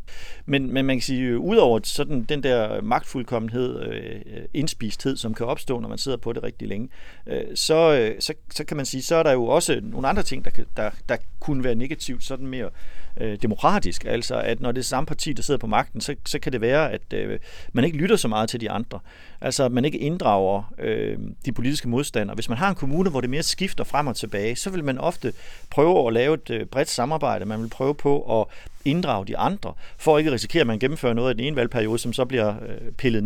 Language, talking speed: Danish, 225 wpm